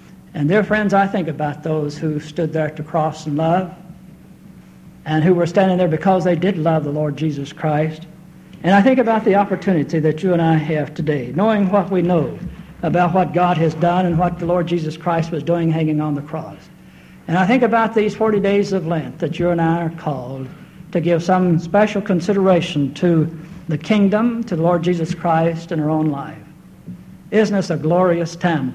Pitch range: 160-190 Hz